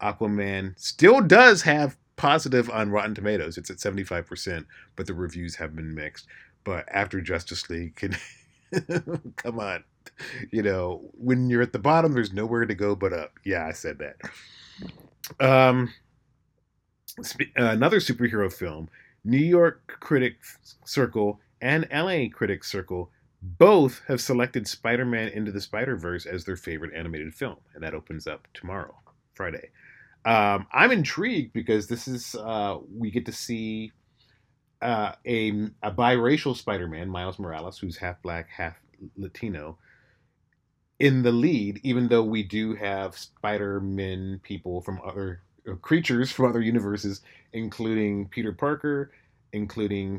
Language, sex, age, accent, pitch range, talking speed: English, male, 30-49, American, 95-125 Hz, 135 wpm